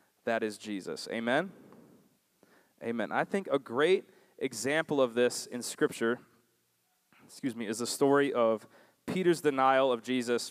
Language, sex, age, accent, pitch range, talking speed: English, male, 20-39, American, 125-170 Hz, 135 wpm